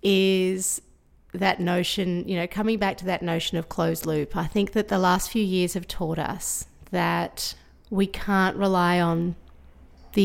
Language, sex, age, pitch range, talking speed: English, female, 30-49, 155-190 Hz, 170 wpm